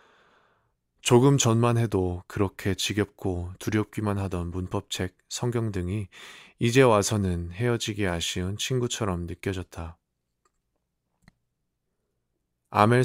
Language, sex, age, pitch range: Korean, male, 20-39, 90-110 Hz